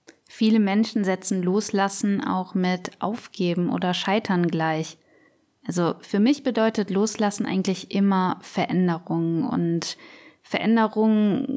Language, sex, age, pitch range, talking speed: German, female, 20-39, 180-220 Hz, 105 wpm